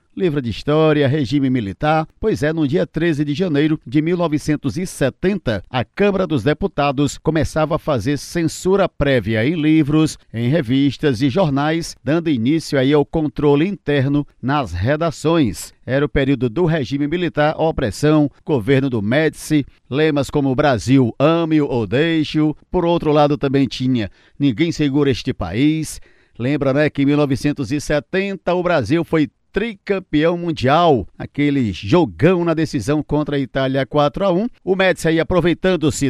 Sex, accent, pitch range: male, Brazilian, 135-160 Hz